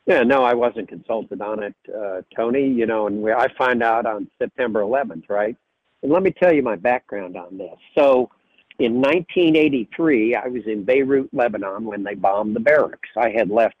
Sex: male